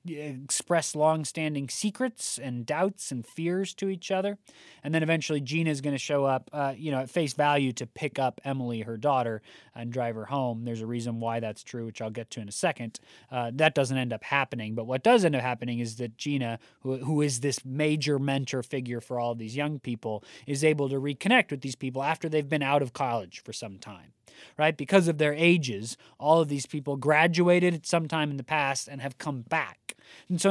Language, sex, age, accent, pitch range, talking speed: English, male, 20-39, American, 125-160 Hz, 225 wpm